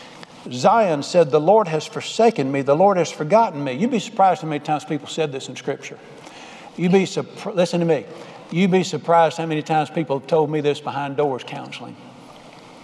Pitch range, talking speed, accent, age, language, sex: 155-230 Hz, 195 wpm, American, 60-79, English, male